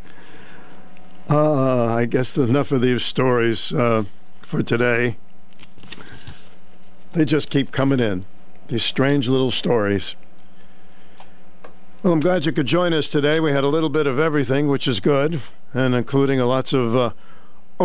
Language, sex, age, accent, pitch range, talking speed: English, male, 60-79, American, 125-160 Hz, 140 wpm